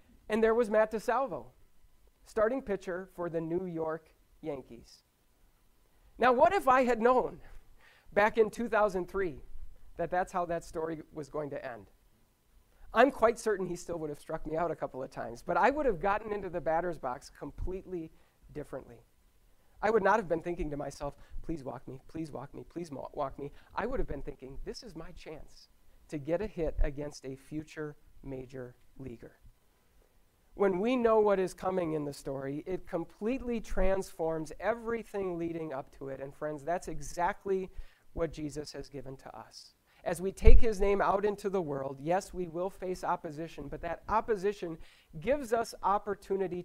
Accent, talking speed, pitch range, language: American, 175 wpm, 150-200 Hz, English